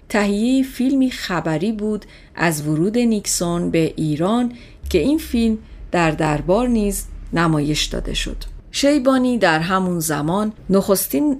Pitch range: 155-200 Hz